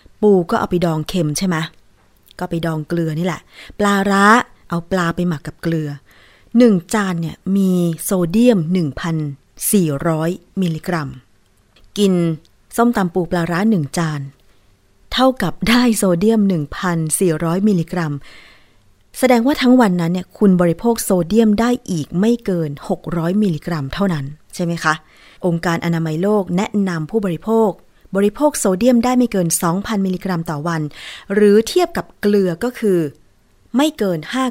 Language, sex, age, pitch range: Thai, female, 20-39, 160-205 Hz